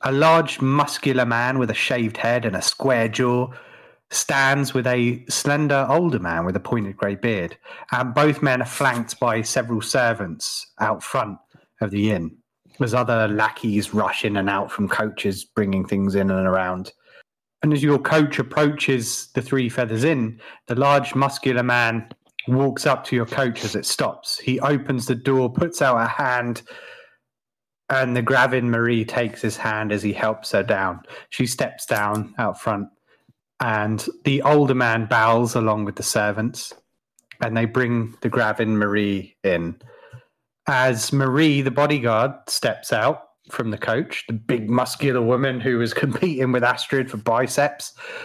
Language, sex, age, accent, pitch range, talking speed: English, male, 30-49, British, 110-135 Hz, 165 wpm